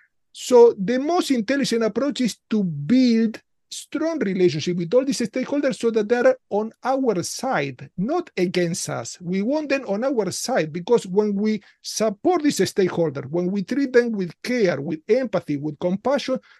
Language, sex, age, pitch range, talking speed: English, male, 50-69, 185-250 Hz, 165 wpm